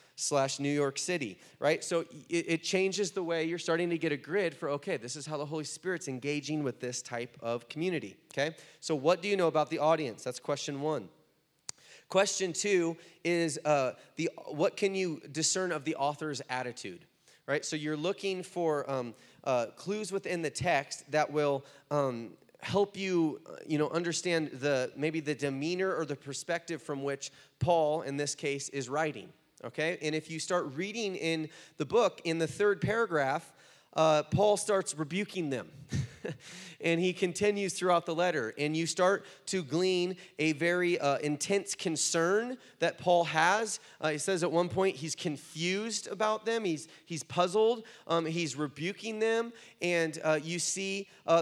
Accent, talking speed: American, 175 wpm